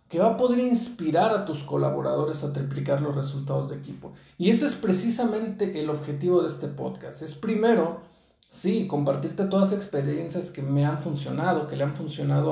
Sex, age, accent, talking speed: male, 50-69, Mexican, 180 wpm